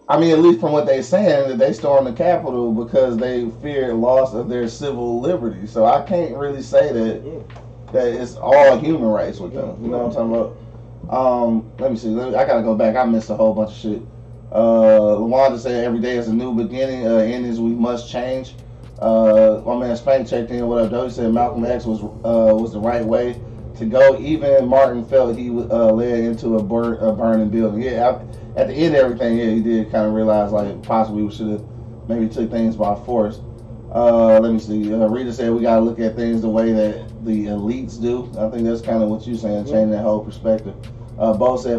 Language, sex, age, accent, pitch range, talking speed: English, male, 30-49, American, 110-125 Hz, 230 wpm